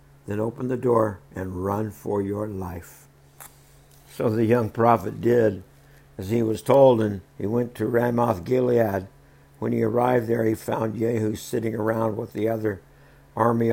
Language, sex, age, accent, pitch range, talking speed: English, male, 60-79, American, 100-120 Hz, 160 wpm